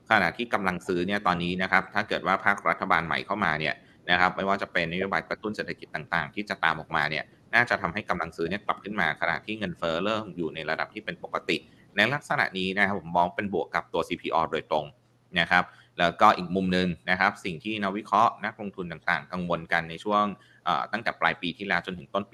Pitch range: 85-100 Hz